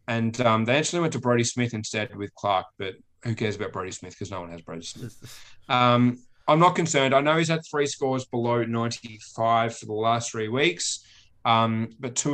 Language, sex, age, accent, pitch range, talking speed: English, male, 20-39, Australian, 100-120 Hz, 210 wpm